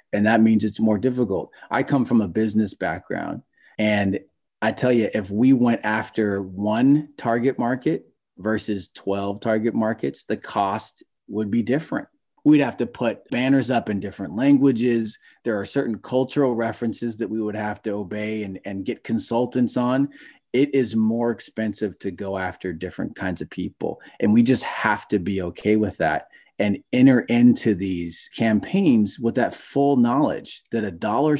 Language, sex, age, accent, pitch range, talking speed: English, male, 30-49, American, 105-125 Hz, 170 wpm